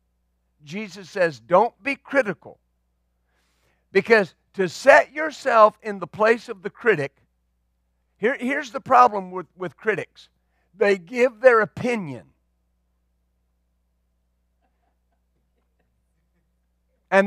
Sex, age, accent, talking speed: male, 50-69, American, 90 wpm